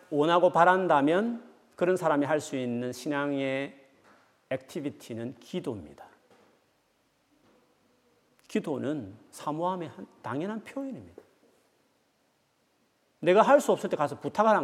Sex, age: male, 40-59